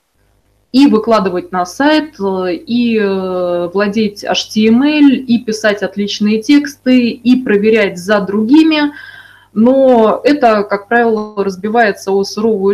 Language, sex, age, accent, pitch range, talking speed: Russian, female, 20-39, native, 200-255 Hz, 105 wpm